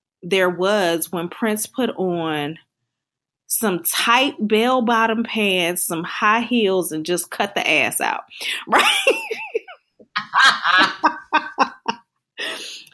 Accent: American